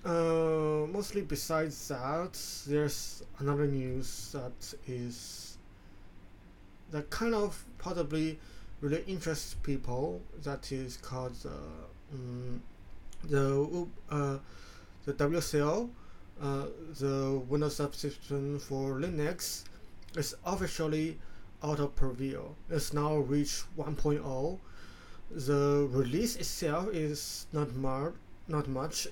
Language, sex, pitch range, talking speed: English, male, 100-155 Hz, 100 wpm